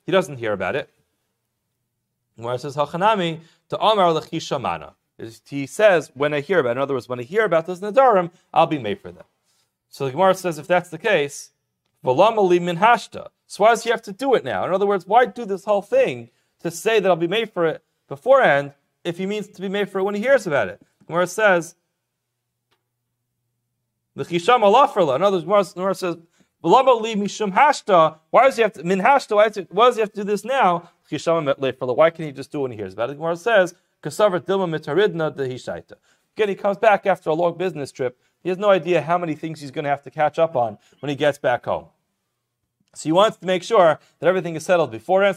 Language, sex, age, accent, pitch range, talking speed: English, male, 40-59, American, 150-205 Hz, 185 wpm